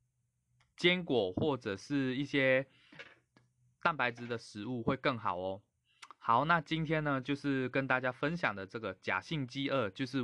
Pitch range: 115-140 Hz